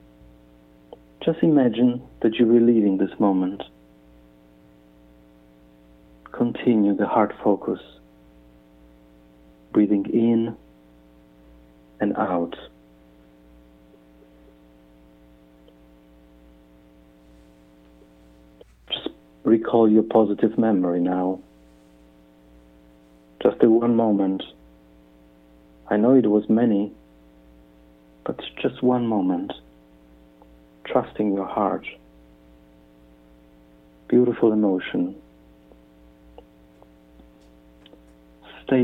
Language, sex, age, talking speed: English, male, 50-69, 60 wpm